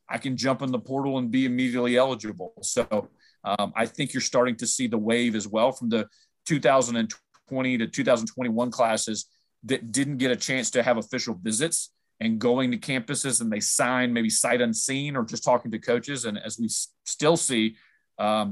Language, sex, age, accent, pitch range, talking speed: English, male, 30-49, American, 115-135 Hz, 190 wpm